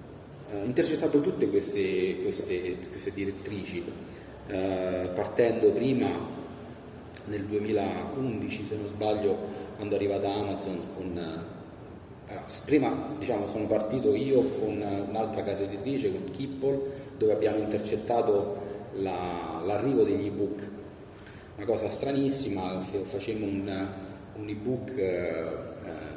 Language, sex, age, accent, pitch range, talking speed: Italian, male, 30-49, native, 100-130 Hz, 110 wpm